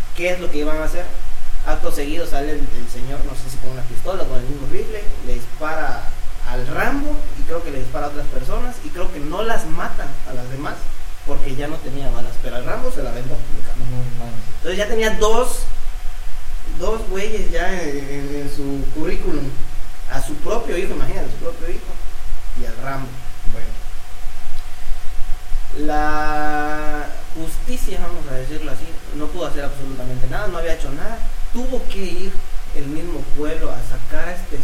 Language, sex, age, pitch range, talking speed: Spanish, male, 30-49, 125-155 Hz, 180 wpm